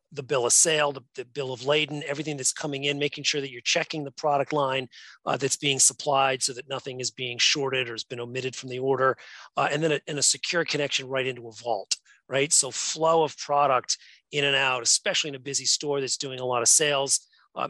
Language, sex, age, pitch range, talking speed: English, male, 40-59, 125-145 Hz, 235 wpm